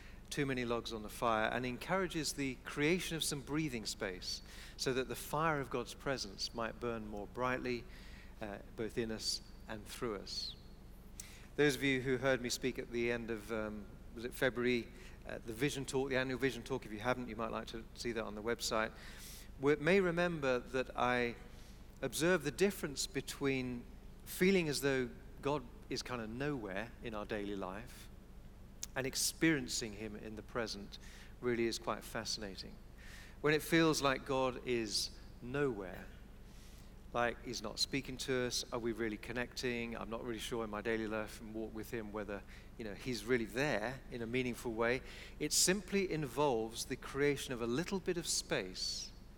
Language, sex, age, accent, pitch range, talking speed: English, male, 40-59, British, 110-135 Hz, 180 wpm